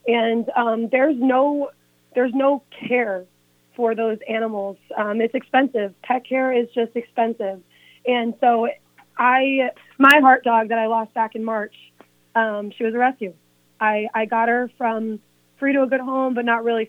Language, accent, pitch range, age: English, American, 225-260 Hz, 30-49